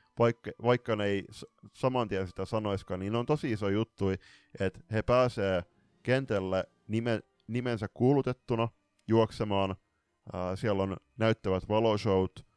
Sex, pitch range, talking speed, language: male, 95-115 Hz, 130 wpm, Finnish